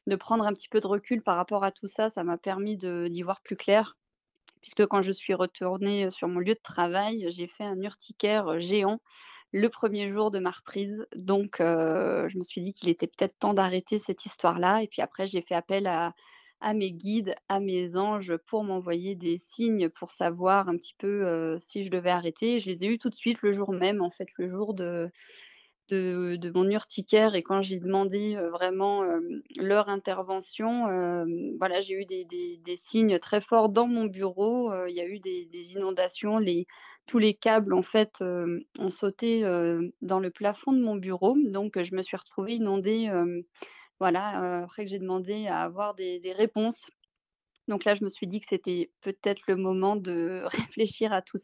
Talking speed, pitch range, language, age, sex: 210 wpm, 180-215 Hz, French, 20-39, female